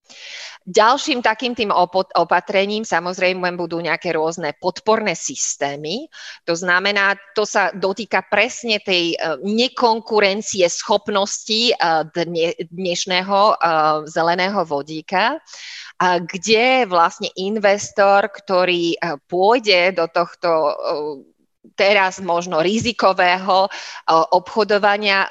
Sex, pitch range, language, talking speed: female, 170-215 Hz, Slovak, 80 wpm